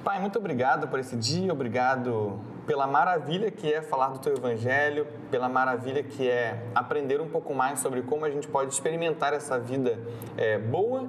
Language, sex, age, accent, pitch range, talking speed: Portuguese, male, 20-39, Brazilian, 120-180 Hz, 175 wpm